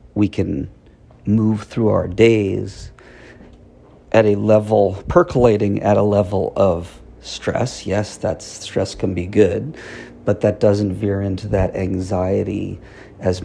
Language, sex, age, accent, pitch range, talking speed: English, male, 50-69, American, 95-110 Hz, 130 wpm